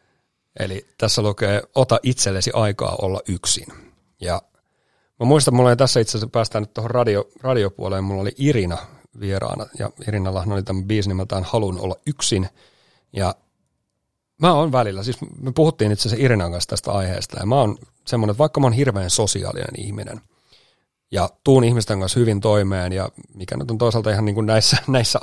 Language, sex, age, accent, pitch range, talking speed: Finnish, male, 40-59, native, 100-125 Hz, 175 wpm